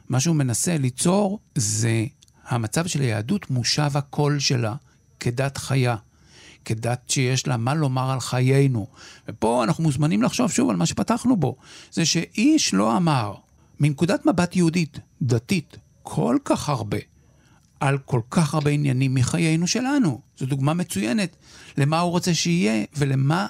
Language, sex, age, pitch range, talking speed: Hebrew, male, 60-79, 120-155 Hz, 140 wpm